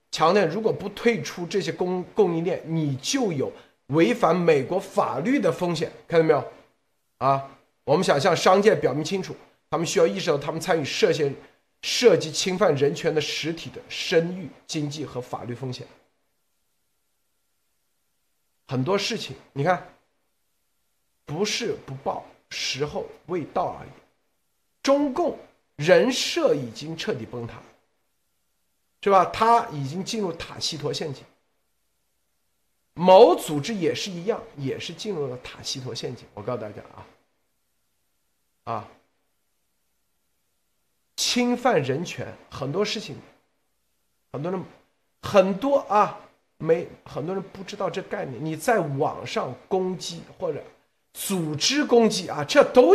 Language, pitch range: Chinese, 130-205 Hz